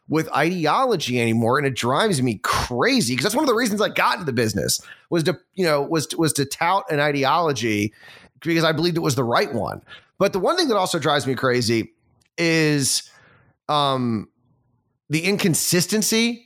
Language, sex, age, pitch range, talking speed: English, male, 30-49, 125-155 Hz, 180 wpm